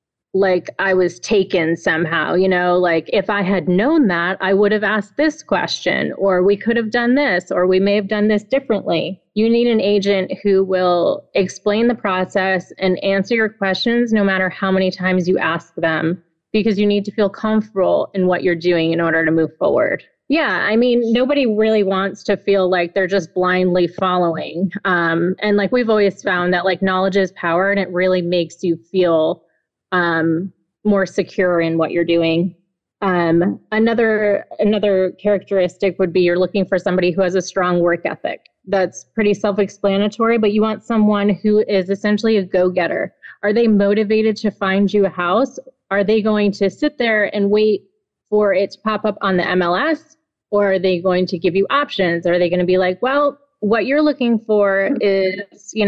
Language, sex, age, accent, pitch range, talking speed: English, female, 30-49, American, 180-215 Hz, 190 wpm